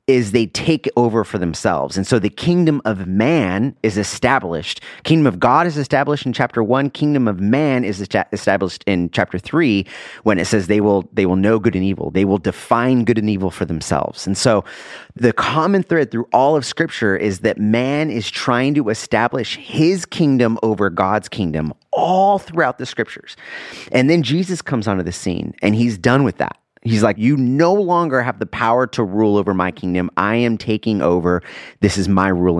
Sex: male